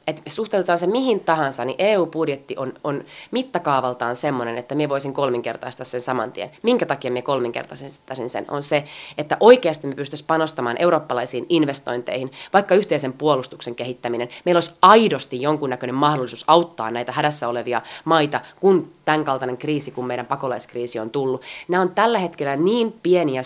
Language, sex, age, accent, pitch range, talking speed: Finnish, female, 20-39, native, 130-185 Hz, 150 wpm